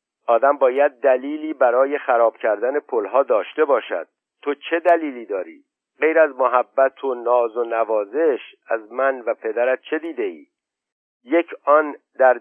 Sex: male